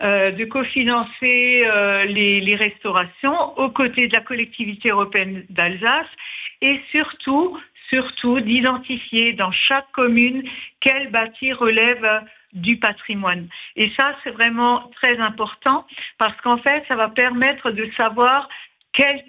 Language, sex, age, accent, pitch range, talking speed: French, female, 50-69, French, 210-260 Hz, 130 wpm